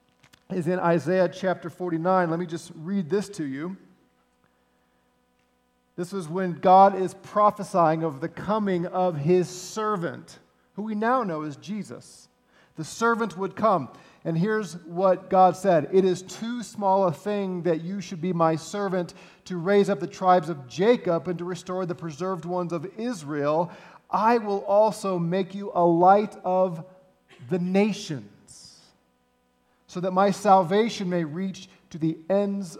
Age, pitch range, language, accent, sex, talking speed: 40-59, 165-200 Hz, English, American, male, 155 wpm